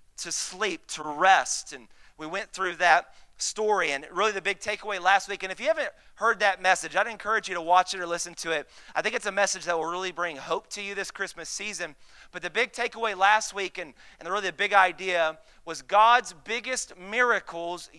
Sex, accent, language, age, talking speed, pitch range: male, American, English, 30-49, 215 wpm, 175-215 Hz